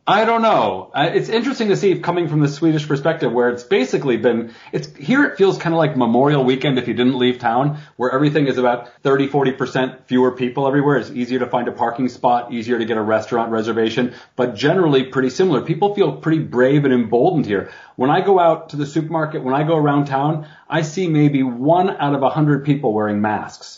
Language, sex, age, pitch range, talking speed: English, male, 30-49, 125-160 Hz, 220 wpm